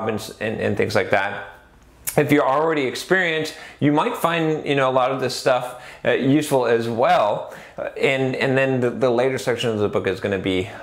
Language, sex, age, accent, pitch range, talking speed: English, male, 30-49, American, 110-135 Hz, 195 wpm